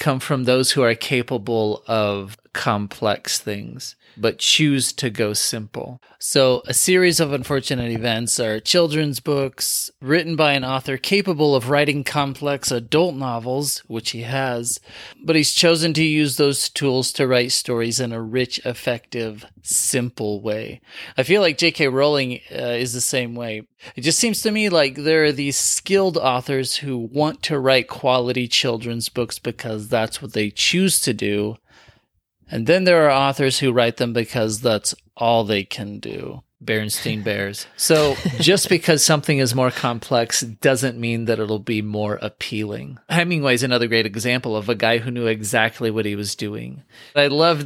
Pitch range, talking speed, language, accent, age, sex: 110-140 Hz, 170 wpm, English, American, 30-49, male